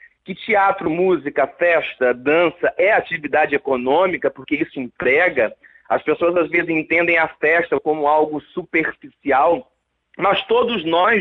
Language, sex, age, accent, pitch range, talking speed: Portuguese, male, 30-49, Brazilian, 150-230 Hz, 130 wpm